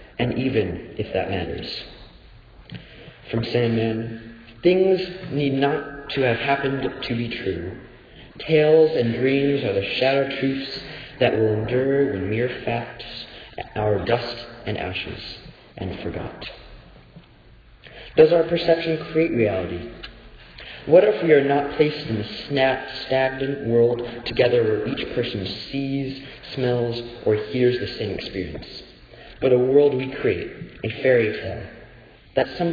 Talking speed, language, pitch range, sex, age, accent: 130 wpm, English, 115-140 Hz, male, 40-59, American